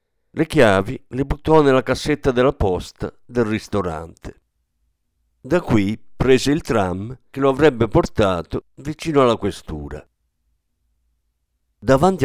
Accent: native